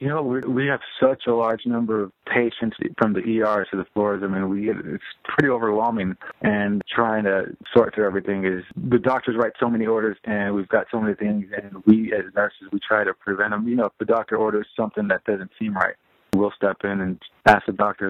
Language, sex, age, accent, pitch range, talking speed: English, male, 30-49, American, 100-115 Hz, 225 wpm